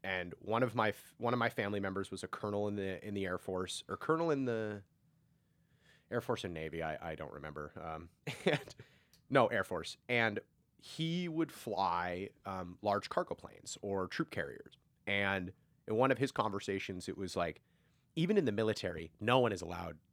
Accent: American